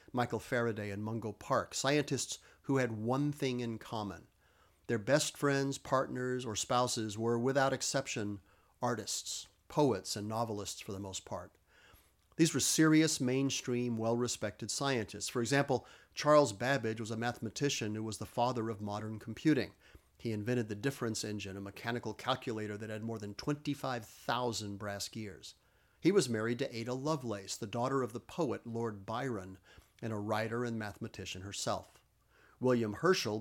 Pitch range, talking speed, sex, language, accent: 105-130 Hz, 155 wpm, male, English, American